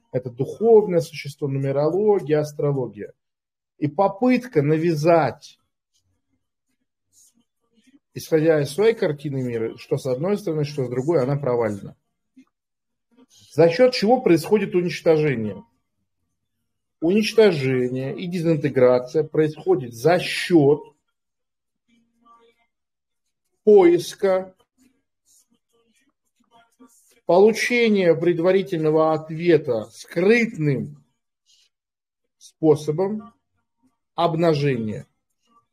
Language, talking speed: Russian, 65 wpm